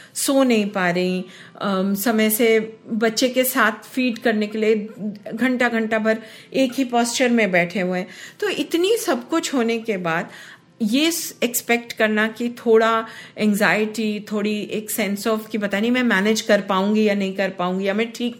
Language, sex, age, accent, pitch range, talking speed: Hindi, female, 50-69, native, 195-245 Hz, 175 wpm